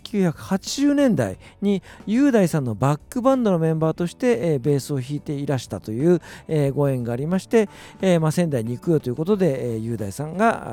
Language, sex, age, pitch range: Japanese, male, 50-69, 125-185 Hz